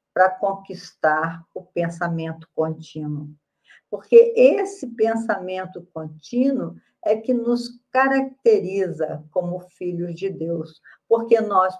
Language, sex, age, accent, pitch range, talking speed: Portuguese, female, 50-69, Brazilian, 165-210 Hz, 95 wpm